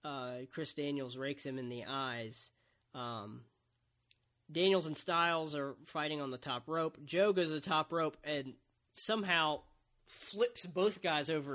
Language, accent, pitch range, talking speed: English, American, 120-155 Hz, 155 wpm